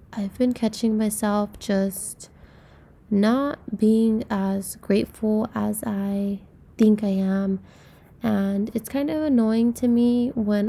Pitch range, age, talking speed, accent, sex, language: 190-225 Hz, 20-39, 125 wpm, American, female, English